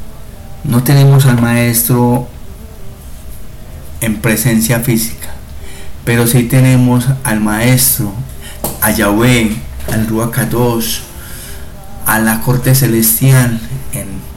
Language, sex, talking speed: Spanish, male, 90 wpm